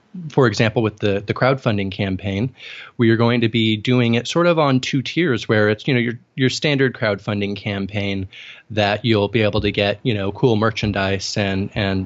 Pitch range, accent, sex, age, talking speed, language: 105-120 Hz, American, male, 20-39, 195 wpm, English